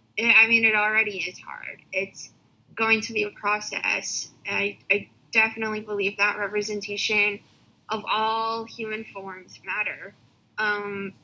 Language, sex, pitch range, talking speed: English, female, 185-210 Hz, 130 wpm